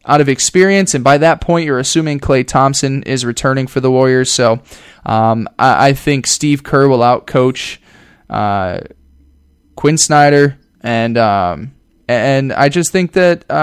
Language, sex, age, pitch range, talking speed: English, male, 10-29, 120-145 Hz, 160 wpm